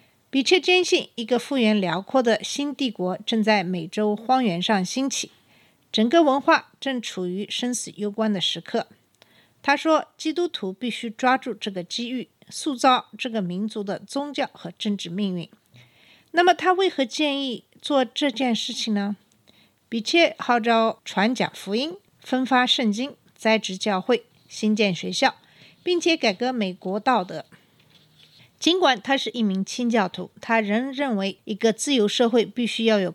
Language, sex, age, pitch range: Chinese, female, 50-69, 200-260 Hz